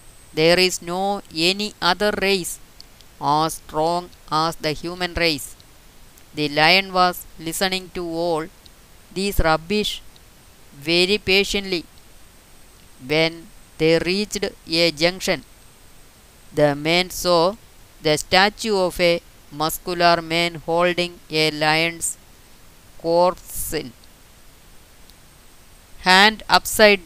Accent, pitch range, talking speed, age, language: native, 155-185 Hz, 95 wpm, 20-39, Malayalam